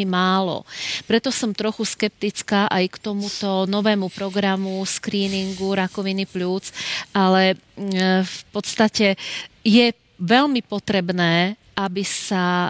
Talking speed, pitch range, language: 100 wpm, 185-200 Hz, Slovak